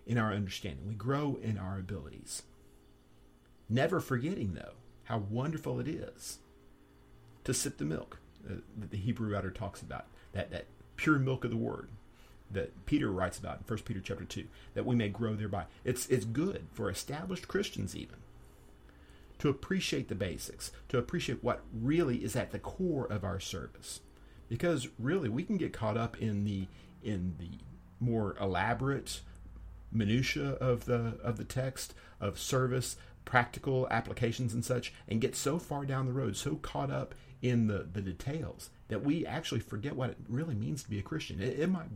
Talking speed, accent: 175 wpm, American